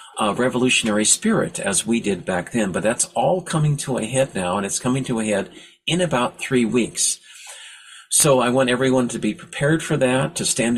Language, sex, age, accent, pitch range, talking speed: English, male, 50-69, American, 105-130 Hz, 205 wpm